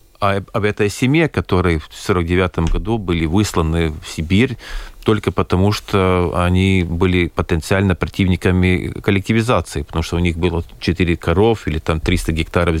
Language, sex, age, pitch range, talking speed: Russian, male, 40-59, 85-115 Hz, 145 wpm